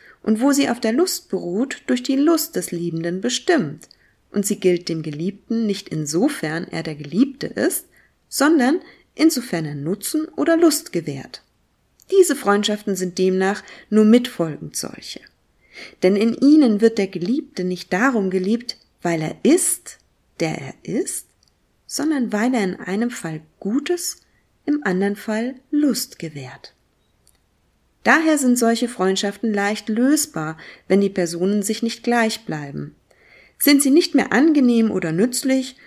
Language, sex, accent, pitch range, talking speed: German, female, German, 175-265 Hz, 140 wpm